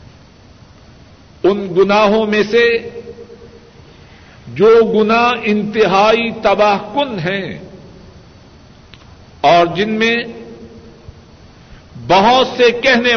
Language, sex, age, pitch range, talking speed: Urdu, male, 60-79, 190-240 Hz, 75 wpm